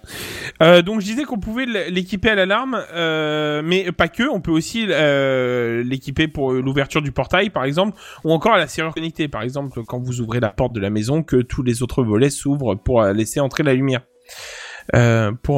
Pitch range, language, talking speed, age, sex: 135-180 Hz, French, 205 wpm, 20-39, male